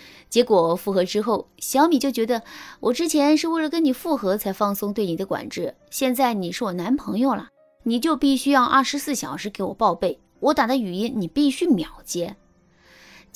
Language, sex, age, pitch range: Chinese, female, 20-39, 185-280 Hz